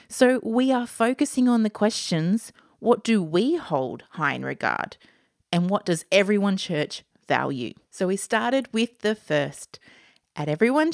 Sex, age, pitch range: female, 30-49, 175-225 Hz